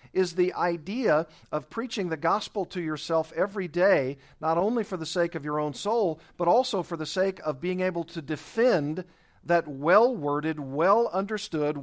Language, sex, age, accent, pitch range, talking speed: English, male, 50-69, American, 140-175 Hz, 170 wpm